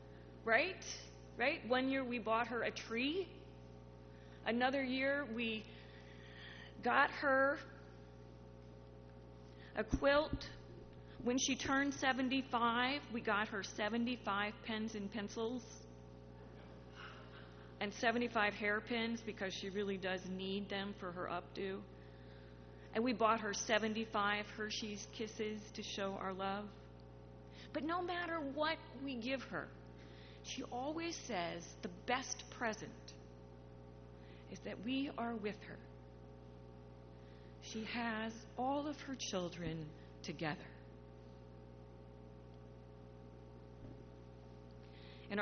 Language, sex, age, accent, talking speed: English, female, 40-59, American, 100 wpm